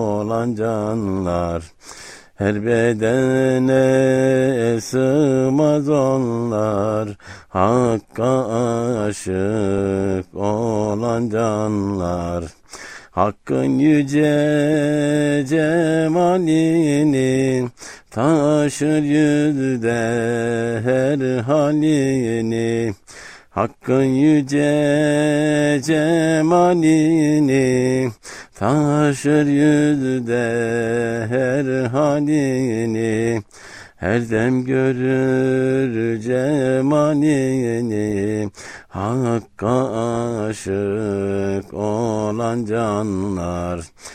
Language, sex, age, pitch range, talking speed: Turkish, male, 60-79, 105-135 Hz, 40 wpm